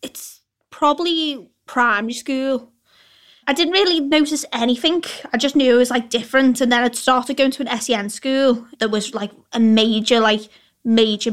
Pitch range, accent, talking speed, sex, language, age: 215-260 Hz, British, 170 wpm, female, English, 20-39